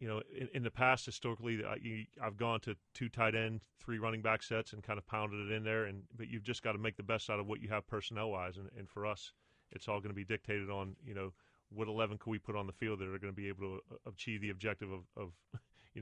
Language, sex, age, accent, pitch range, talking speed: English, male, 30-49, American, 100-110 Hz, 280 wpm